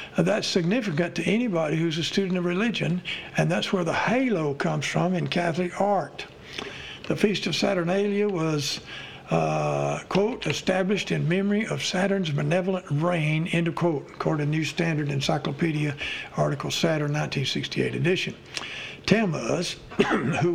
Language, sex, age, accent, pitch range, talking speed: English, male, 60-79, American, 155-190 Hz, 135 wpm